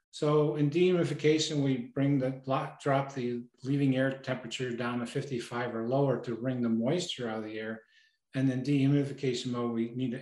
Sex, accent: male, American